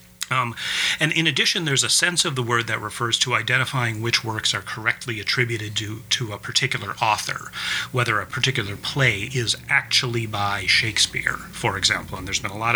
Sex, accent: male, American